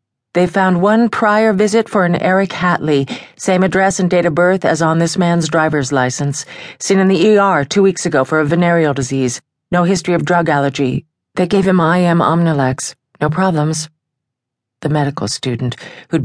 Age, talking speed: 40-59, 175 wpm